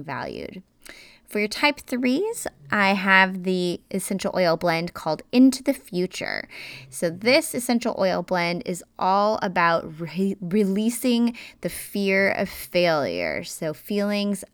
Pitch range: 165-215 Hz